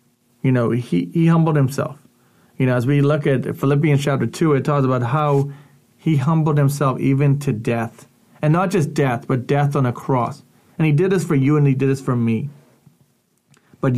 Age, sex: 40-59, male